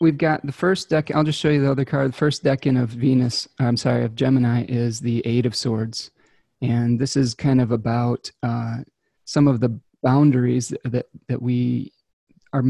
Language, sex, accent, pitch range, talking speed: English, male, American, 115-130 Hz, 200 wpm